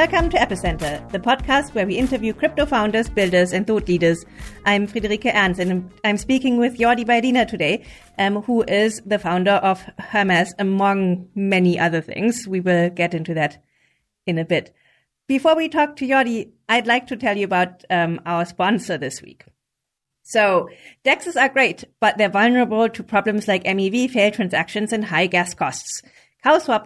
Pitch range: 180-235 Hz